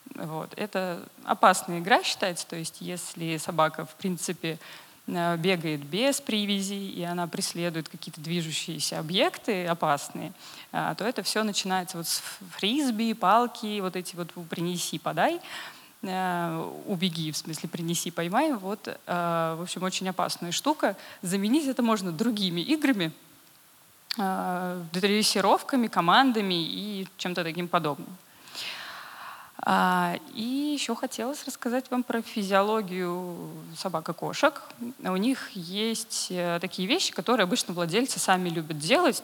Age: 20-39